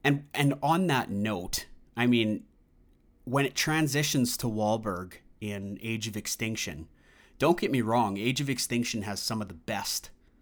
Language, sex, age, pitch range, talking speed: English, male, 30-49, 100-130 Hz, 160 wpm